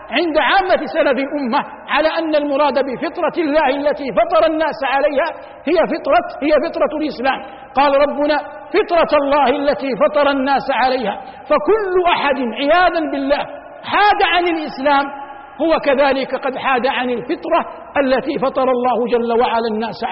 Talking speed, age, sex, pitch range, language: 135 wpm, 50-69, male, 265-325 Hz, Arabic